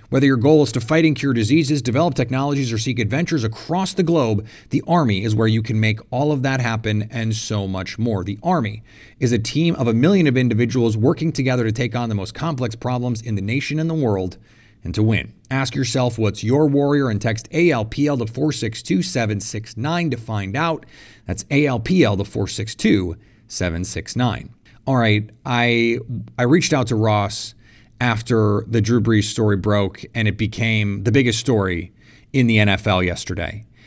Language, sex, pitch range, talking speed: English, male, 110-135 Hz, 180 wpm